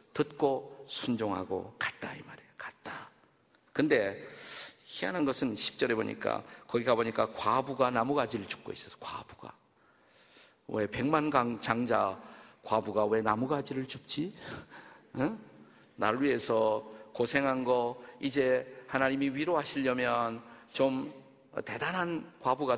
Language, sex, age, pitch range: Korean, male, 50-69, 105-135 Hz